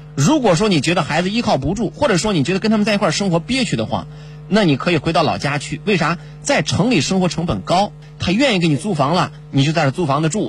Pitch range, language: 150-185 Hz, Chinese